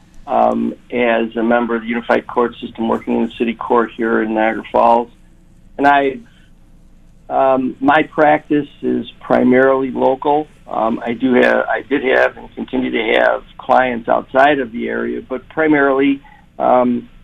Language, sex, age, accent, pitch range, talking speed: English, male, 50-69, American, 115-140 Hz, 155 wpm